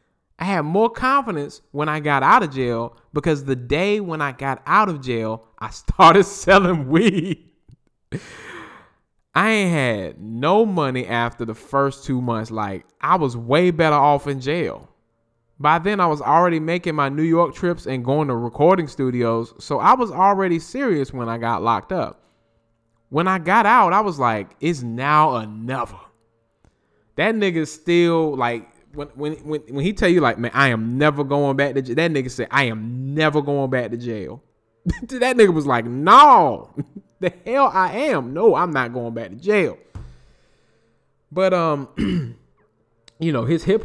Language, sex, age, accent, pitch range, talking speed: English, male, 20-39, American, 120-175 Hz, 175 wpm